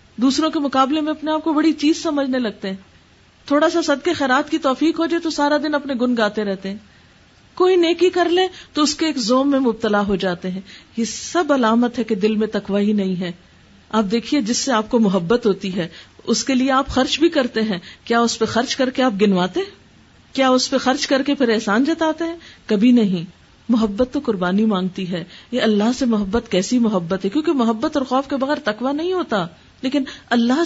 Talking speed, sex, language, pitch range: 220 wpm, female, Urdu, 200-275 Hz